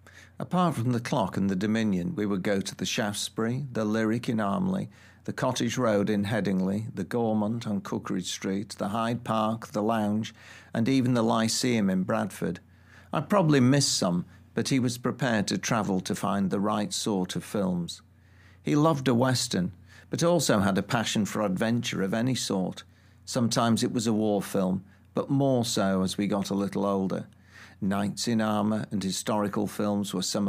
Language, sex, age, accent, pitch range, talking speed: English, male, 50-69, British, 95-115 Hz, 180 wpm